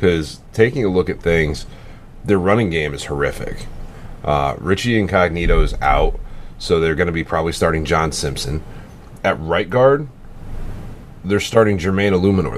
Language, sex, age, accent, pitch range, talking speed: English, male, 30-49, American, 80-110 Hz, 155 wpm